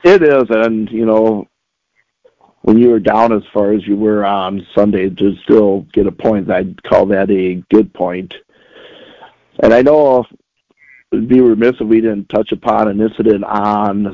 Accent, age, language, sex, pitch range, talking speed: American, 50-69, English, male, 105-120 Hz, 180 wpm